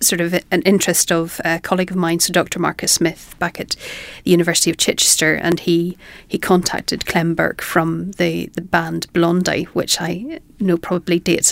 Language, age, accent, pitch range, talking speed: English, 40-59, Irish, 170-185 Hz, 180 wpm